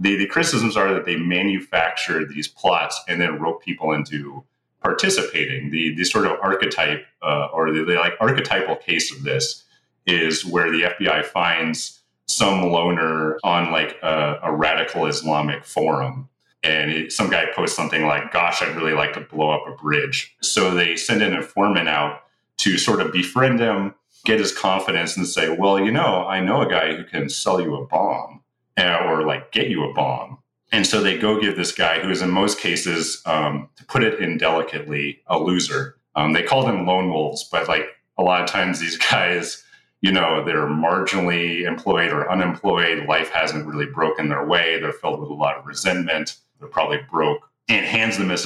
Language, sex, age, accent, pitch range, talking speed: English, male, 30-49, American, 75-95 Hz, 190 wpm